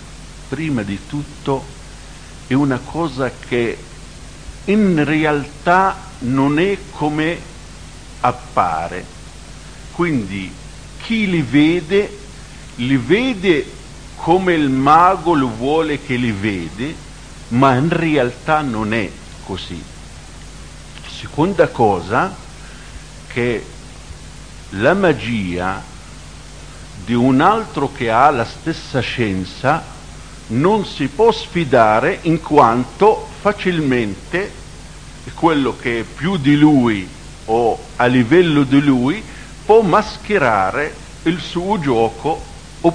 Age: 50-69